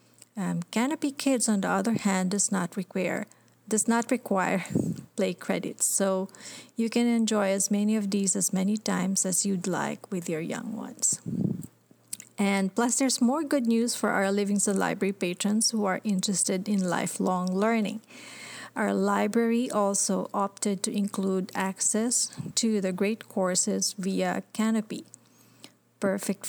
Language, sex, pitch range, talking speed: English, female, 190-220 Hz, 145 wpm